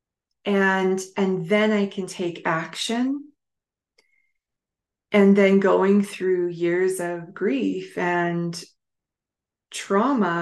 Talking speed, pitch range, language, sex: 90 wpm, 175-205 Hz, English, female